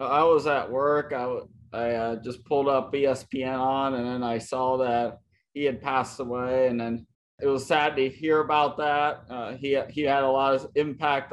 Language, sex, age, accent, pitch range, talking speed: English, male, 20-39, American, 125-145 Hz, 200 wpm